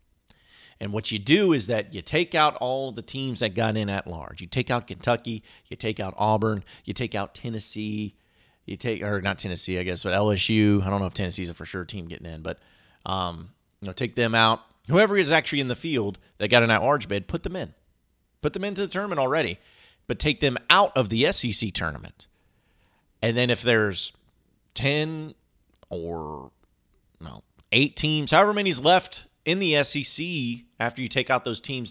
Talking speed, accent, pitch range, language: 195 wpm, American, 100-145 Hz, English